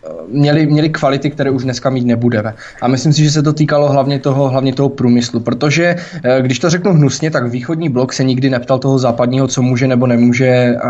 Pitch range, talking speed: 125-145 Hz, 200 wpm